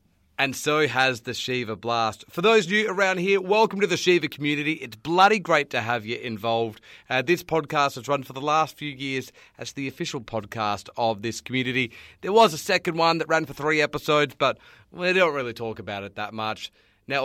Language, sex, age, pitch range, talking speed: English, male, 30-49, 115-160 Hz, 210 wpm